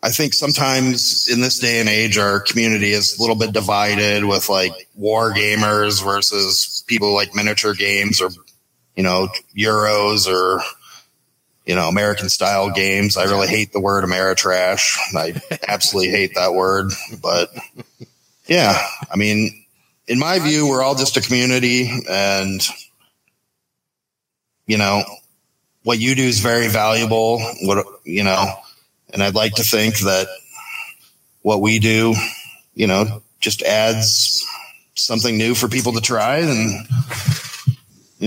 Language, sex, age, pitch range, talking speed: English, male, 30-49, 95-115 Hz, 145 wpm